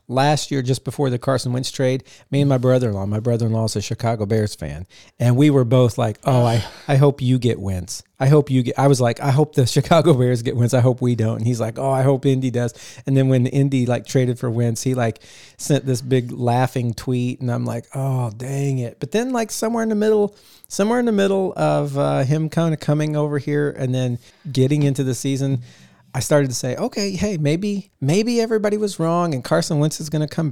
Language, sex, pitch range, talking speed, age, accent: English, male, 120-150 Hz, 240 wpm, 40-59, American